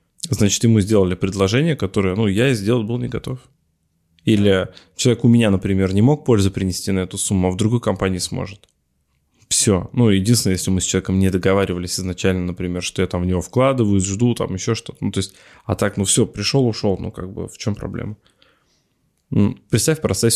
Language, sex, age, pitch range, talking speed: Russian, male, 20-39, 95-110 Hz, 200 wpm